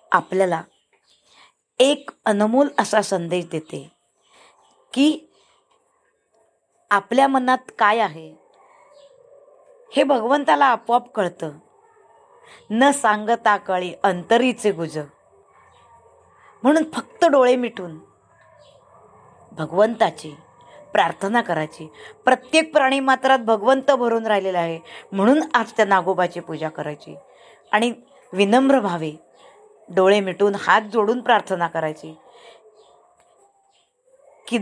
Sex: female